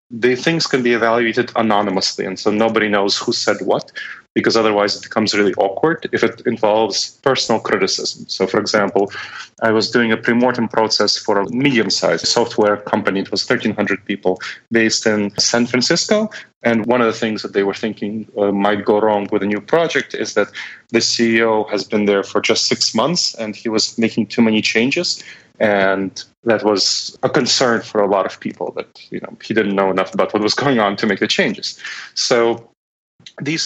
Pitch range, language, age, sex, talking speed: 105-120 Hz, English, 30-49, male, 195 wpm